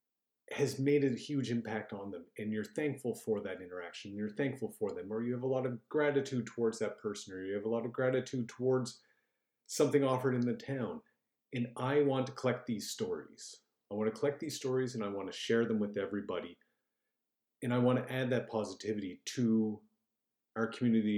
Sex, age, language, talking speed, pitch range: male, 40-59, English, 200 wpm, 105-135 Hz